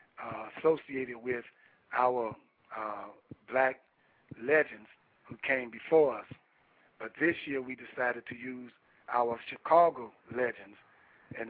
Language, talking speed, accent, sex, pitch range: English, 115 wpm, American, male, 120-135 Hz